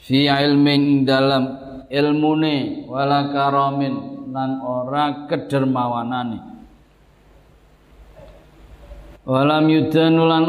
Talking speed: 85 wpm